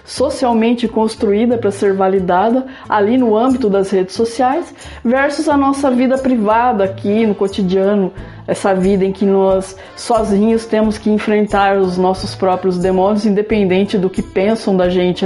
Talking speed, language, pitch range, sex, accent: 150 wpm, Portuguese, 195-245 Hz, female, Brazilian